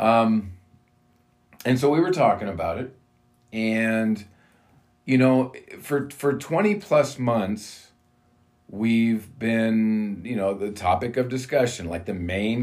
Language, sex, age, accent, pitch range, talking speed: English, male, 40-59, American, 95-120 Hz, 130 wpm